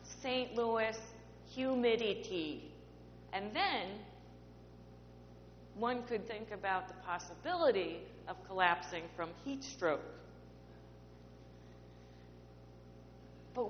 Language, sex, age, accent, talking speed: English, female, 40-59, American, 75 wpm